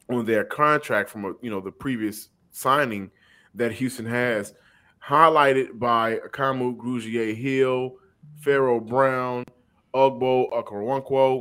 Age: 30-49